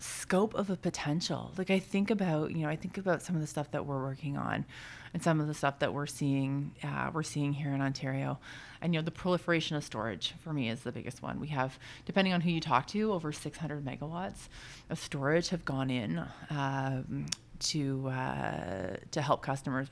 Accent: American